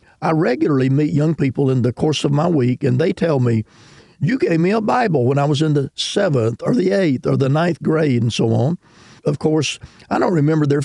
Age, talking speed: 50-69, 230 wpm